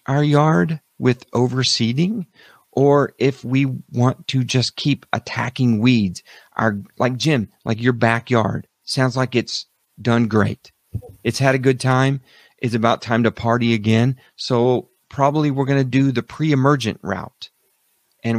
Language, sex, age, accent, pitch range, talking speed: English, male, 40-59, American, 110-130 Hz, 145 wpm